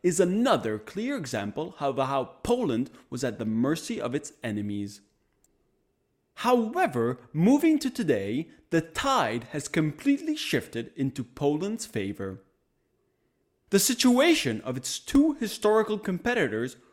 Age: 30-49